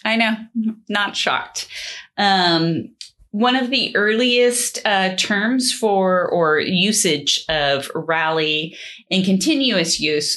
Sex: female